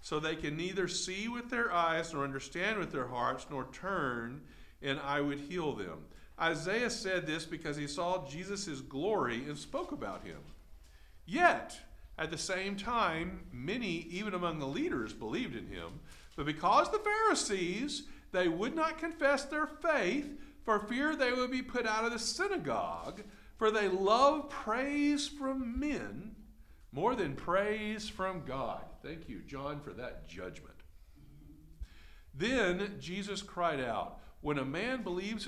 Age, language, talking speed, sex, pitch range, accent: 50-69, English, 150 wpm, male, 145-245 Hz, American